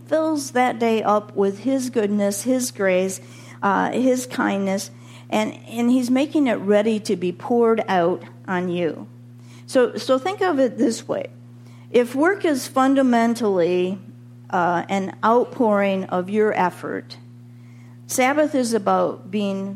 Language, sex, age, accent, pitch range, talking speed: English, female, 50-69, American, 175-230 Hz, 135 wpm